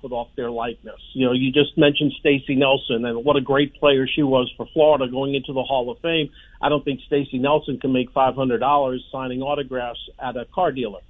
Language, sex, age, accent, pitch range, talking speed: English, male, 50-69, American, 130-150 Hz, 225 wpm